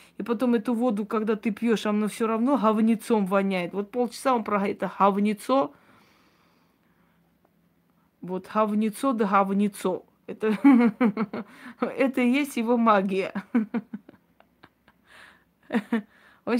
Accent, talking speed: native, 105 wpm